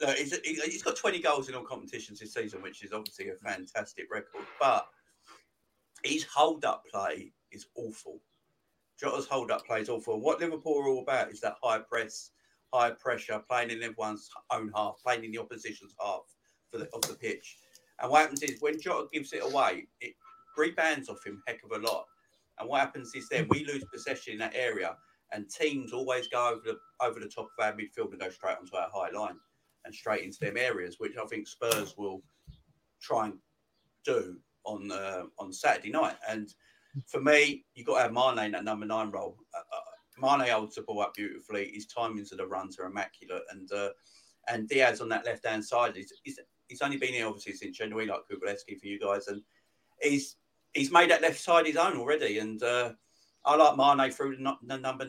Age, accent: 50-69, British